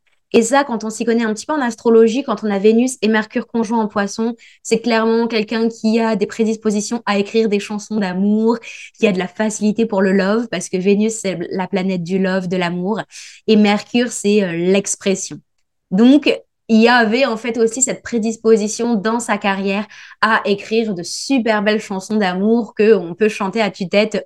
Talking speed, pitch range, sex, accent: 195 wpm, 210-250 Hz, female, French